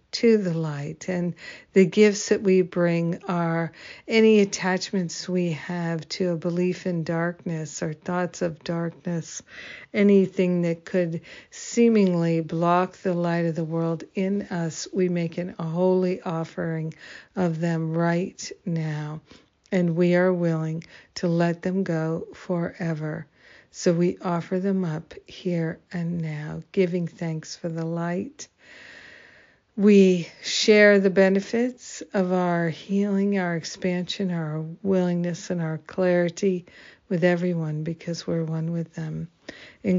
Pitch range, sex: 165-185 Hz, female